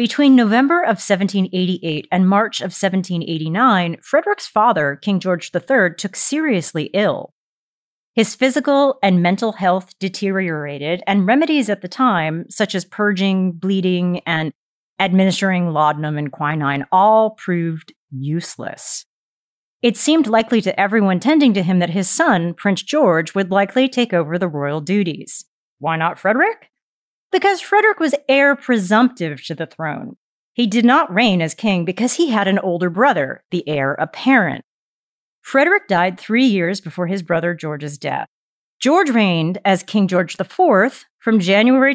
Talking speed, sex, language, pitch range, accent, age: 145 wpm, female, English, 170-240 Hz, American, 30-49